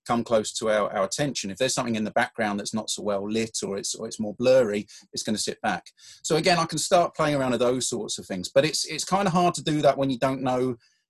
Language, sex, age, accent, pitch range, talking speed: English, male, 30-49, British, 110-135 Hz, 280 wpm